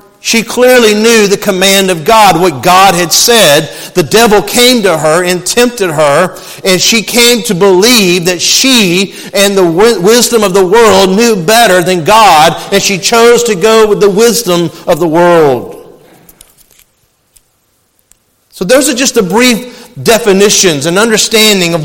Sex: male